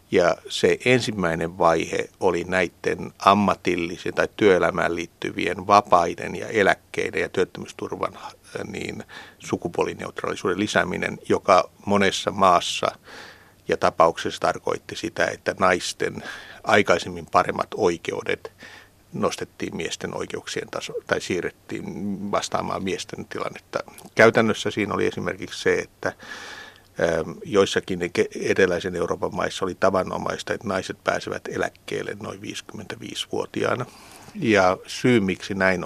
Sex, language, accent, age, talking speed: male, Finnish, native, 60-79, 100 wpm